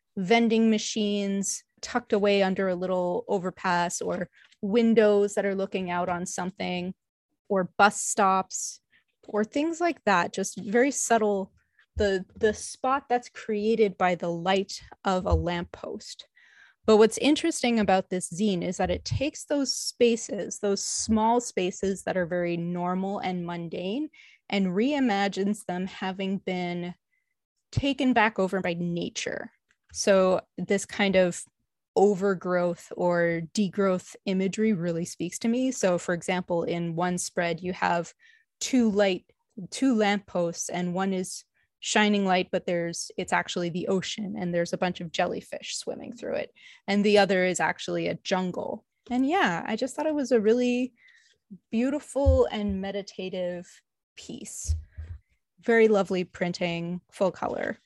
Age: 20-39